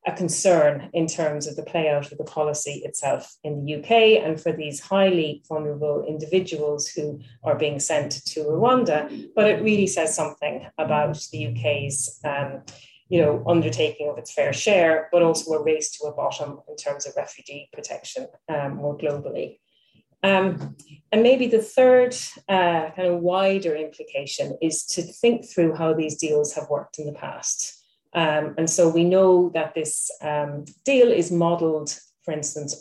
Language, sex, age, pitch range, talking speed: English, female, 30-49, 150-175 Hz, 170 wpm